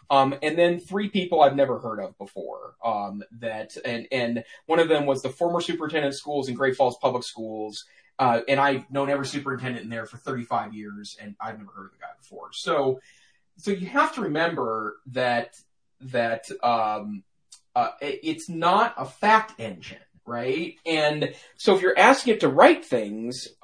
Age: 30-49